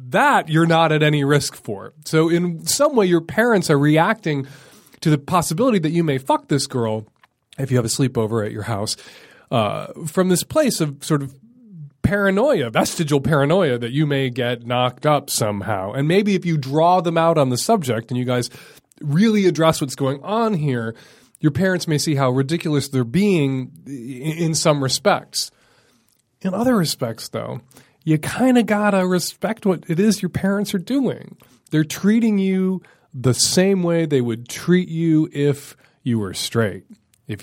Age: 30-49